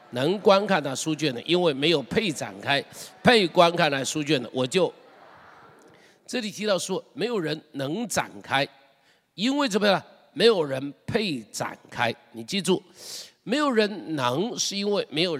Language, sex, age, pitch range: Chinese, male, 50-69, 135-195 Hz